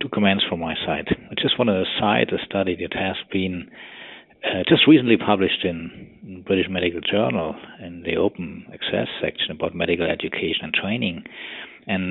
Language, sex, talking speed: English, male, 175 wpm